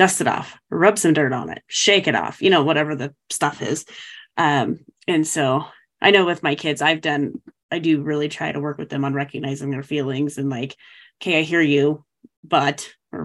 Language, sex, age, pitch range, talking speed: English, female, 30-49, 145-170 Hz, 215 wpm